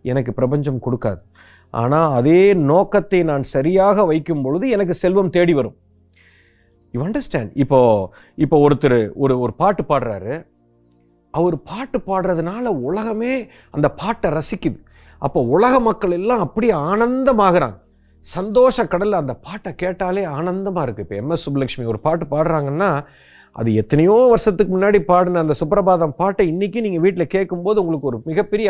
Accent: native